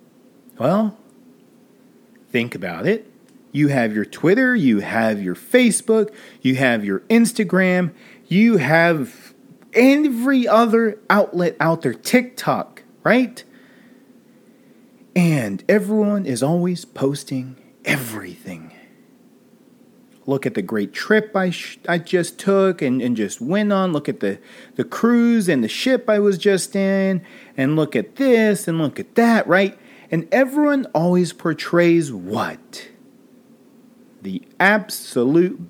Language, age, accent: English, 30-49, American